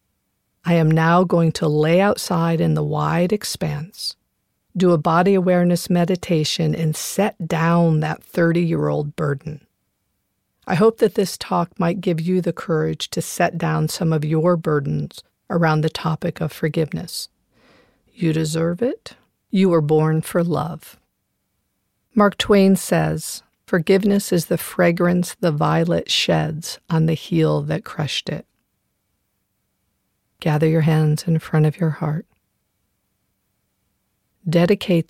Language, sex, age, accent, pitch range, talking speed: English, female, 50-69, American, 150-175 Hz, 130 wpm